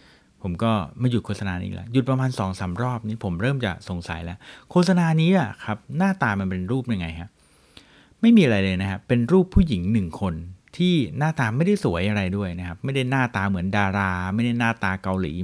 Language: Thai